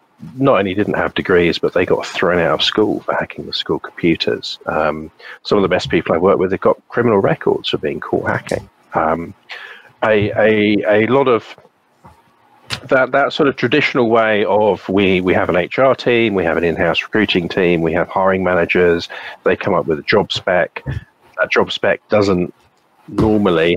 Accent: British